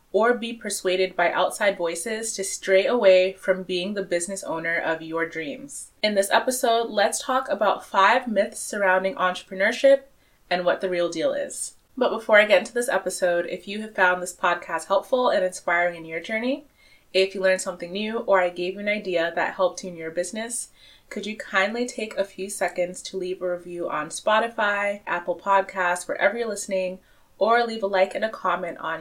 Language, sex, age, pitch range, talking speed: English, female, 20-39, 180-215 Hz, 195 wpm